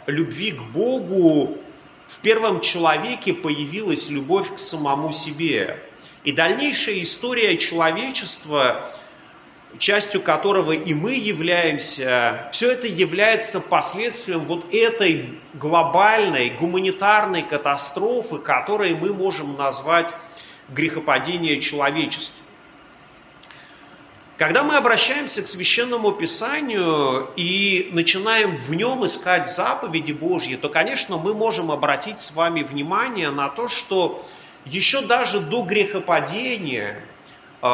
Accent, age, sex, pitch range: native, 30-49, male, 155-235 Hz